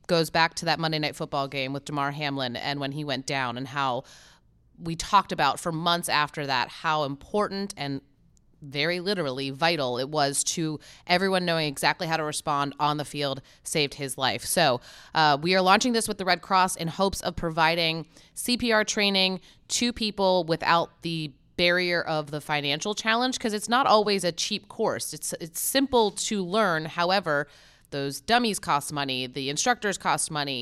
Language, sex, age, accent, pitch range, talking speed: English, female, 30-49, American, 145-180 Hz, 180 wpm